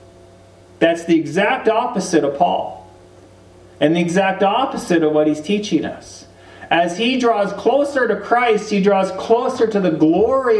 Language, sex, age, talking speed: English, male, 40-59, 155 wpm